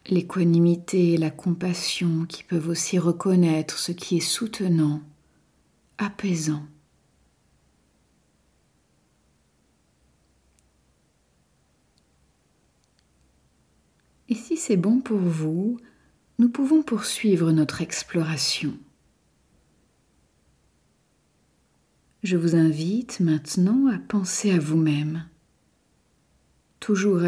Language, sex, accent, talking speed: French, female, French, 75 wpm